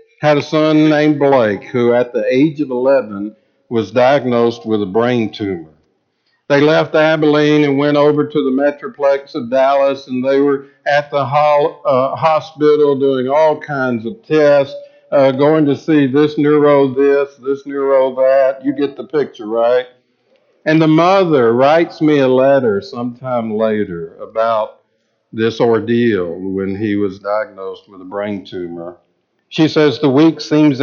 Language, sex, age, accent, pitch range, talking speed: English, male, 60-79, American, 130-150 Hz, 155 wpm